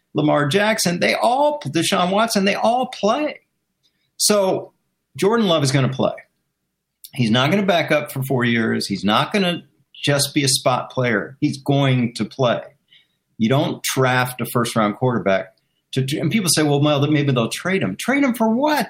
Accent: American